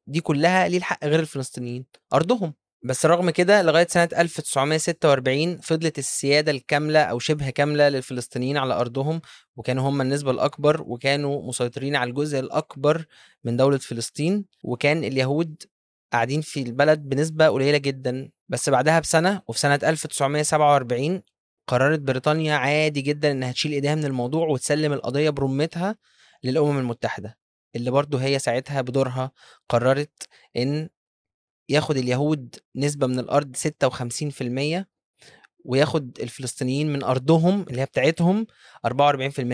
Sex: male